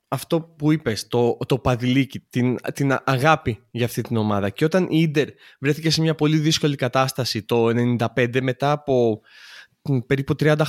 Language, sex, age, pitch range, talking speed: Greek, male, 20-39, 125-160 Hz, 170 wpm